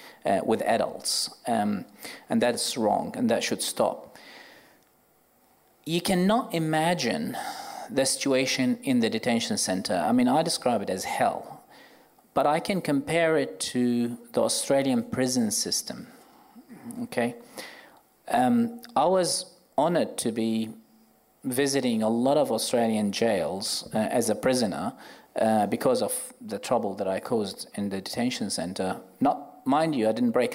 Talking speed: 140 wpm